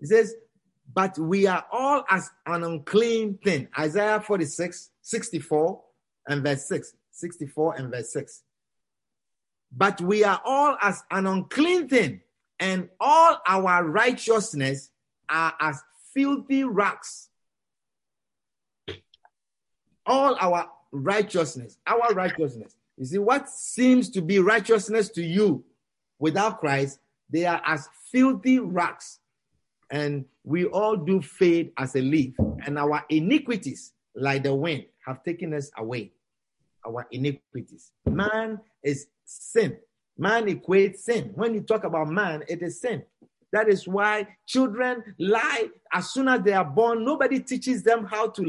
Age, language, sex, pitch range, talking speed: 50-69, English, male, 155-225 Hz, 130 wpm